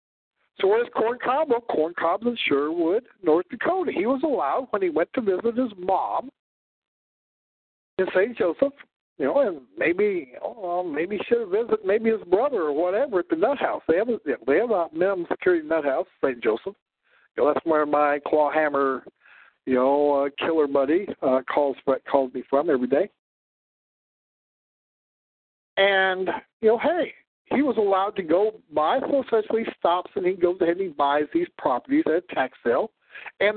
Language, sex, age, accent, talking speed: English, male, 60-79, American, 185 wpm